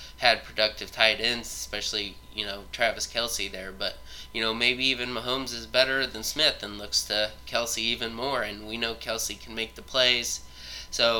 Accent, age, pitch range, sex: American, 20-39, 105-115 Hz, male